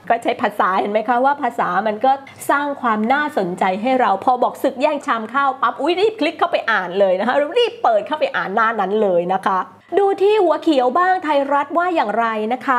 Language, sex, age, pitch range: Thai, female, 30-49, 225-335 Hz